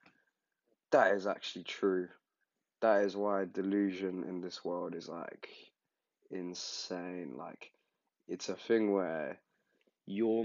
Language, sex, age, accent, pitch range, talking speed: English, male, 20-39, British, 95-105 Hz, 115 wpm